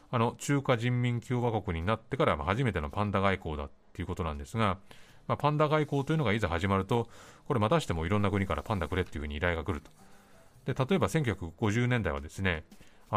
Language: Japanese